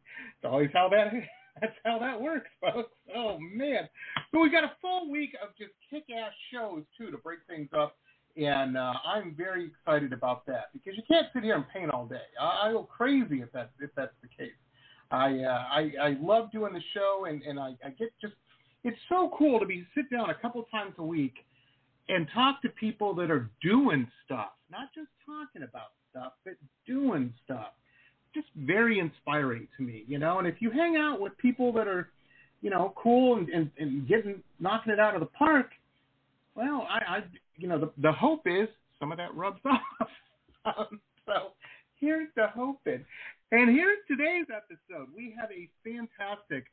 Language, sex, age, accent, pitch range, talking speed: English, male, 40-59, American, 150-245 Hz, 195 wpm